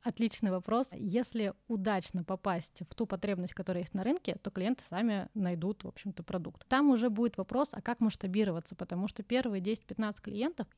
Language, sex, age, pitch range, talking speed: Russian, female, 20-39, 190-230 Hz, 175 wpm